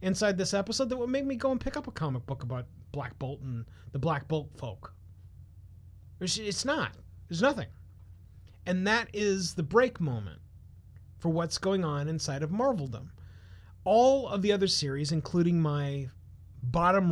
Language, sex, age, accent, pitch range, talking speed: English, male, 30-49, American, 115-180 Hz, 165 wpm